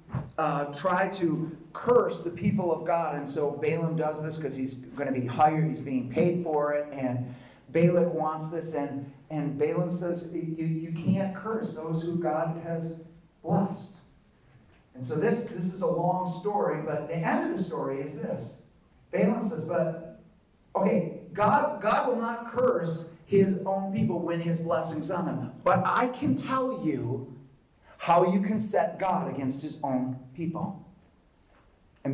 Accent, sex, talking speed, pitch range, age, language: American, male, 165 wpm, 135-185 Hz, 40-59, English